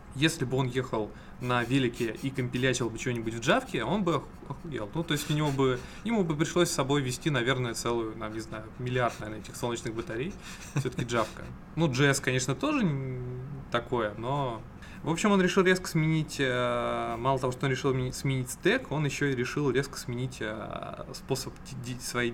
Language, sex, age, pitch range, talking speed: Russian, male, 20-39, 120-155 Hz, 180 wpm